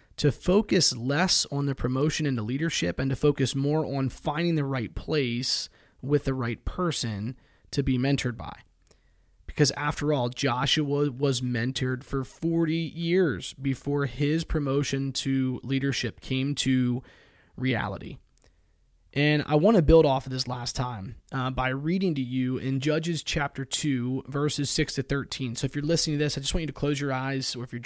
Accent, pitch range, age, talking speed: American, 130-150 Hz, 20-39, 175 wpm